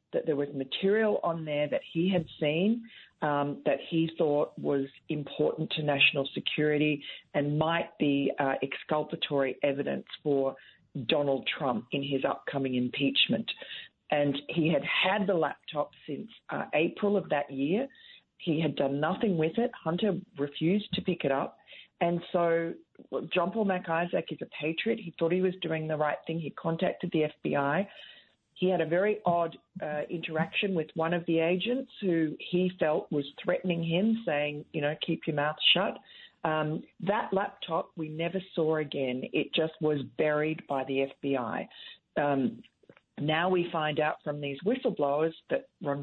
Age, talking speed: 40-59, 165 wpm